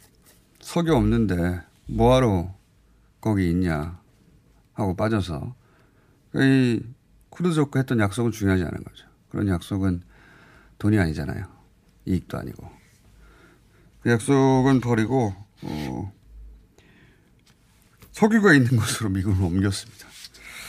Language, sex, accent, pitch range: Korean, male, native, 100-135 Hz